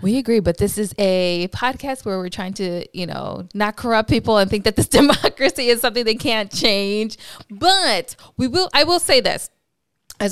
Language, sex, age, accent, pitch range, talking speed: English, female, 20-39, American, 180-225 Hz, 200 wpm